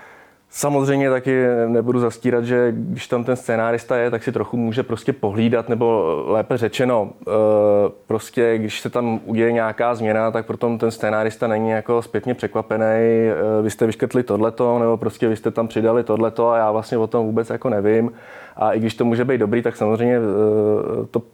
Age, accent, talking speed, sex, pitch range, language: 20-39, native, 175 wpm, male, 105-120 Hz, Czech